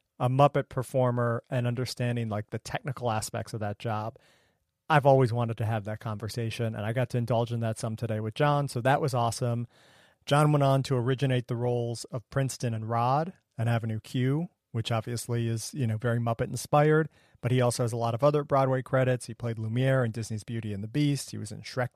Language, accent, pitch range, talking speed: English, American, 115-135 Hz, 215 wpm